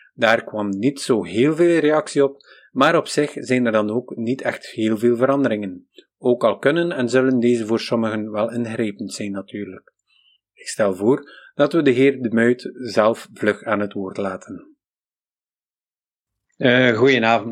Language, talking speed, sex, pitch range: Dutch, 170 wpm, male, 115-135 Hz